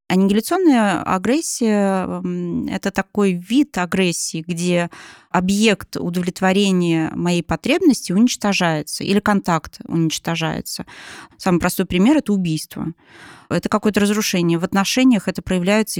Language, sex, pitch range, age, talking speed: Russian, female, 170-205 Hz, 20-39, 100 wpm